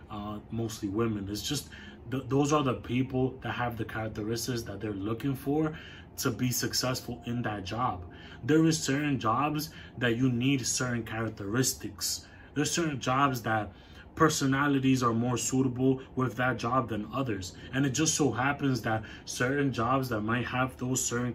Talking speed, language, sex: 165 wpm, English, male